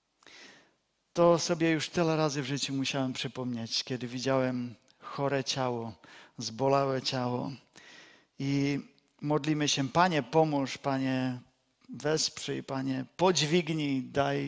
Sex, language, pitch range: male, Czech, 130-165 Hz